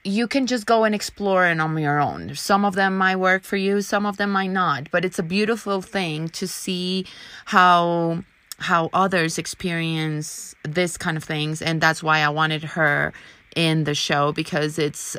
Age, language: 30-49, English